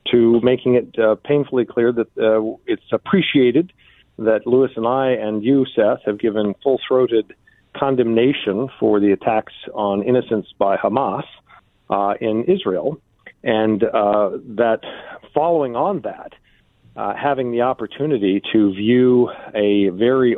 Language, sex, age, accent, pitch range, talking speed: English, male, 50-69, American, 110-140 Hz, 135 wpm